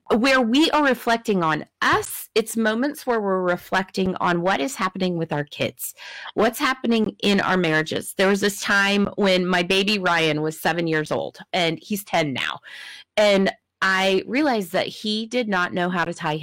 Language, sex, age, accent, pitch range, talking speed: English, female, 30-49, American, 195-270 Hz, 185 wpm